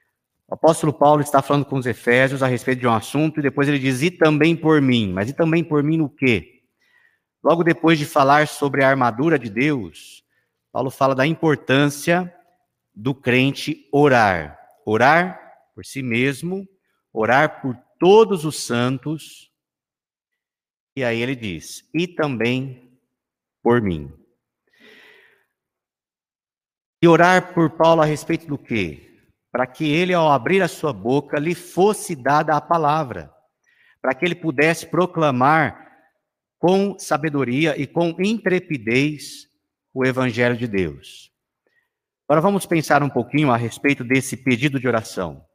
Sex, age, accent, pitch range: male, 50-69, Brazilian, 120-160 Hz